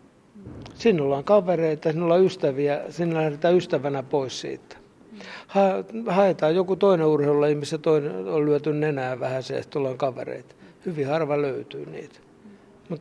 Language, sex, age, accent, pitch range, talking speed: Finnish, male, 60-79, native, 135-170 Hz, 145 wpm